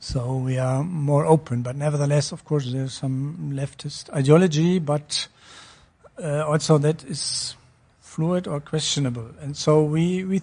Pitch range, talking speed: 130-150 Hz, 150 wpm